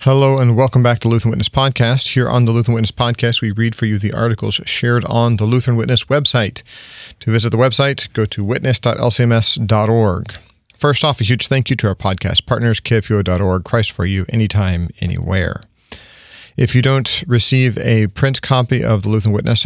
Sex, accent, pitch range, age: male, American, 105-125 Hz, 40-59